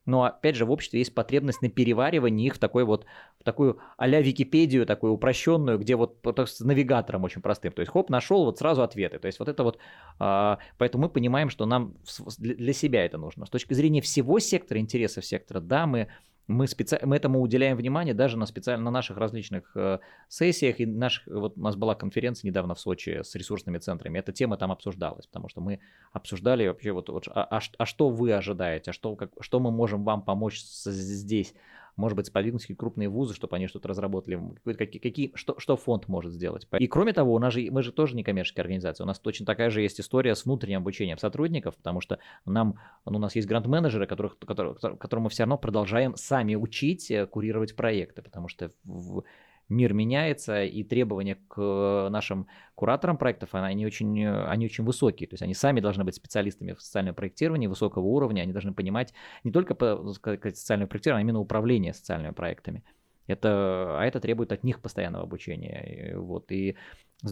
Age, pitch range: 20-39, 100-125 Hz